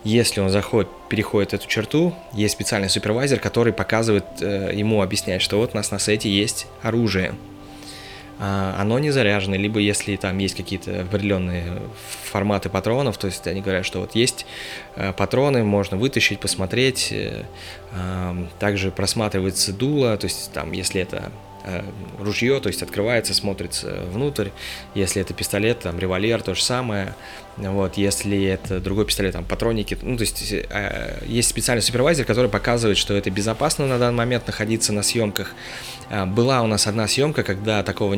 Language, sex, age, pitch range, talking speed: Russian, male, 20-39, 95-110 Hz, 150 wpm